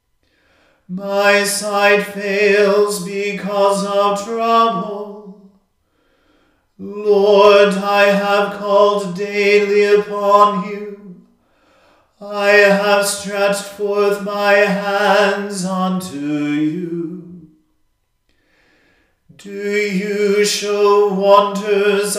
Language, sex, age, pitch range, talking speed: English, male, 40-59, 200-205 Hz, 70 wpm